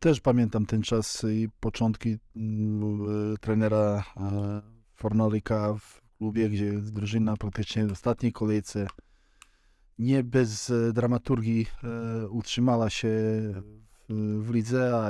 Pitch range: 110-120 Hz